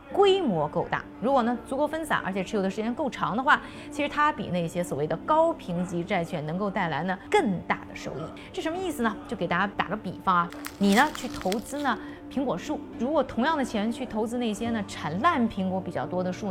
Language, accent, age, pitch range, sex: Chinese, native, 20-39, 180-260 Hz, female